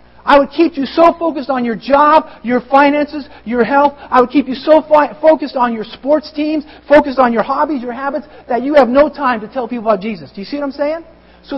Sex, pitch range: male, 210-270 Hz